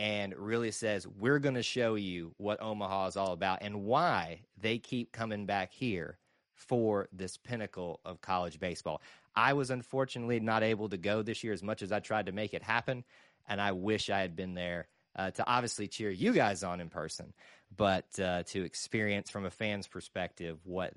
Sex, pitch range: male, 95-125 Hz